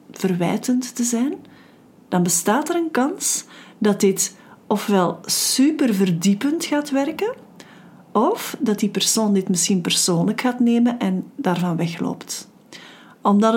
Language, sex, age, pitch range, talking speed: Dutch, female, 40-59, 200-250 Hz, 120 wpm